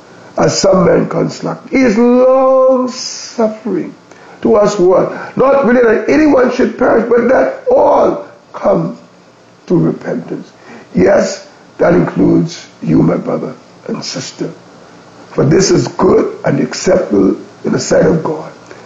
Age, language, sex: 50-69, English, male